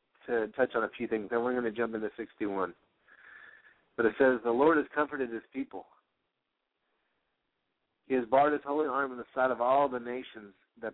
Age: 50-69